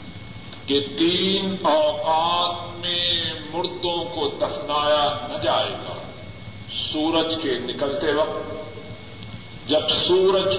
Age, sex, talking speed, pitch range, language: 50-69, male, 85 wpm, 110-175 Hz, Urdu